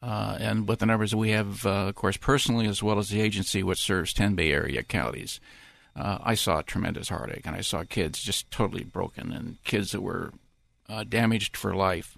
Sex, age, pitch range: male, 50-69, 100-115 Hz